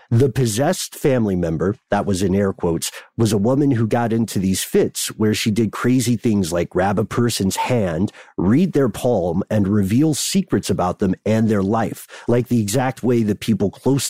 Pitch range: 105-125 Hz